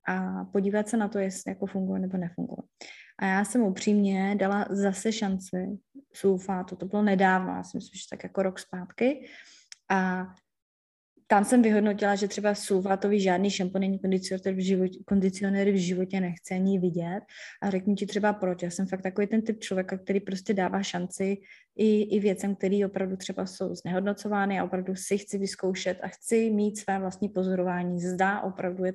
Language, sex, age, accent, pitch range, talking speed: Czech, female, 20-39, native, 185-210 Hz, 170 wpm